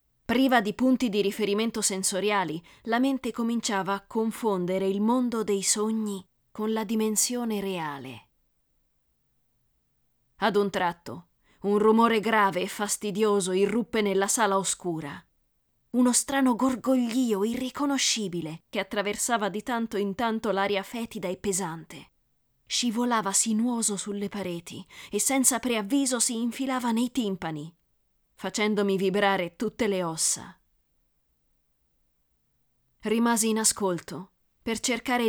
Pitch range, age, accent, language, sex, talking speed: 195-240 Hz, 20-39, native, Italian, female, 110 wpm